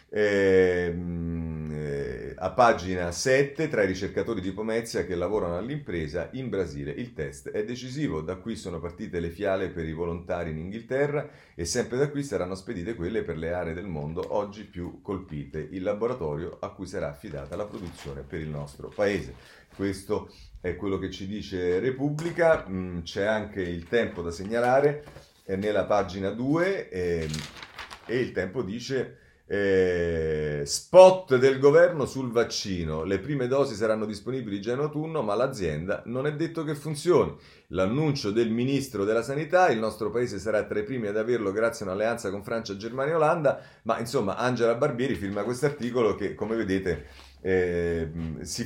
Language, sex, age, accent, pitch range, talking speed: Italian, male, 30-49, native, 90-135 Hz, 160 wpm